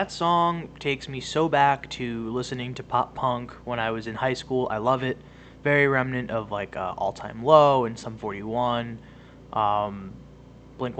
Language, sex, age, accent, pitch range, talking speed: English, male, 20-39, American, 110-135 Hz, 180 wpm